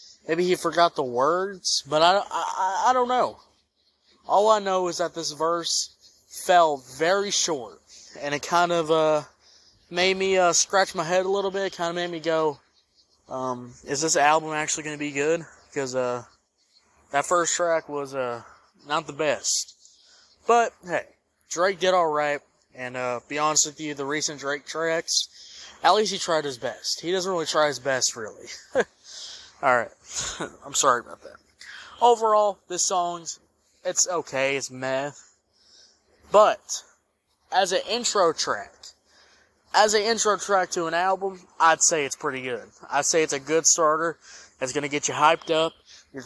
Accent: American